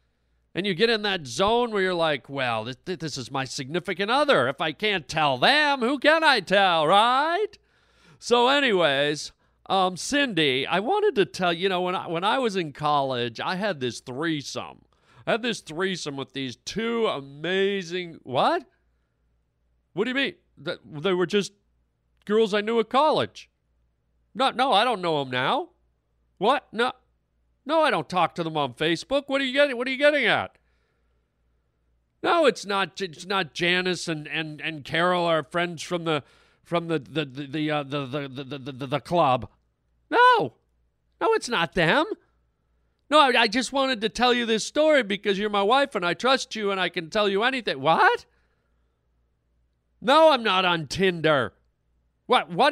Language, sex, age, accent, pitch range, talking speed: English, male, 40-59, American, 135-225 Hz, 180 wpm